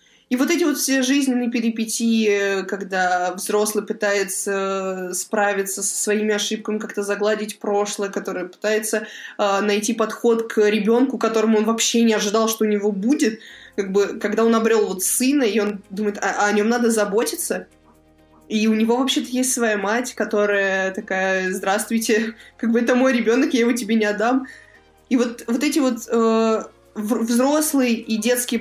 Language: Russian